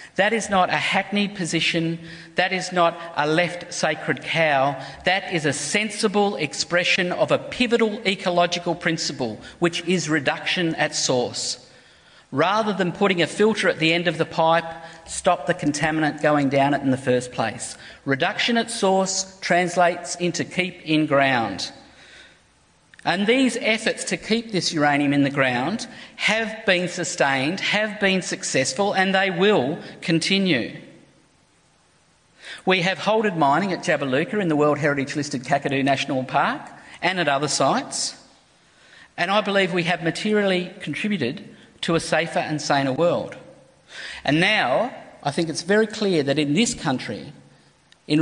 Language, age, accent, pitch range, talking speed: English, 50-69, Australian, 150-195 Hz, 150 wpm